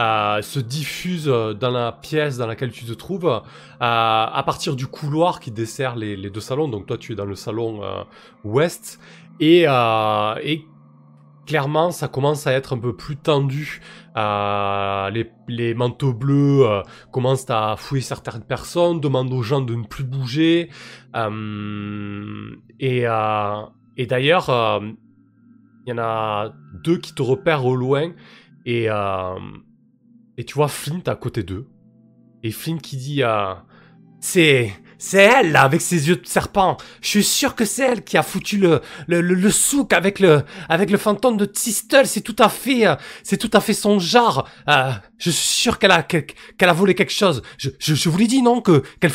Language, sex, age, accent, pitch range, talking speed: French, male, 20-39, French, 115-180 Hz, 185 wpm